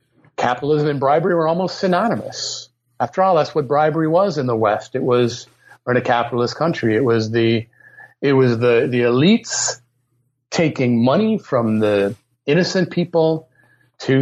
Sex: male